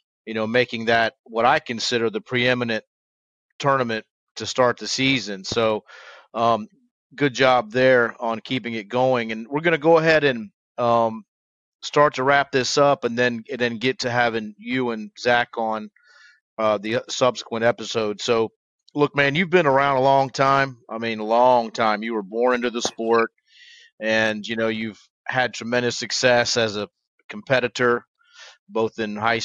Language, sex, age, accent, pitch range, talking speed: English, male, 30-49, American, 110-135 Hz, 170 wpm